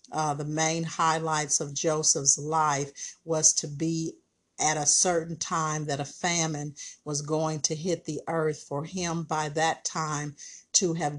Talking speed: 160 wpm